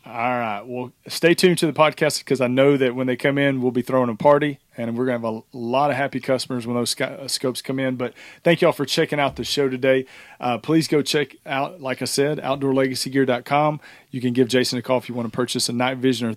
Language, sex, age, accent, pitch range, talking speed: English, male, 40-59, American, 125-140 Hz, 255 wpm